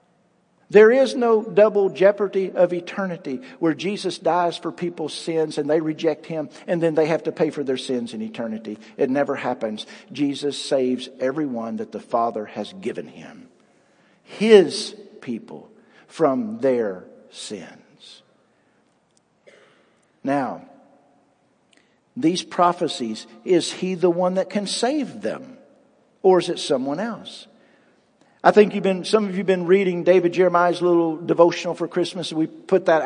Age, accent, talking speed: 50-69, American, 145 wpm